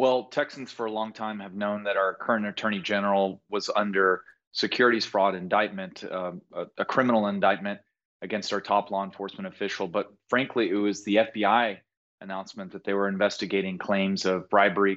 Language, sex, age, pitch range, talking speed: English, male, 30-49, 100-110 Hz, 170 wpm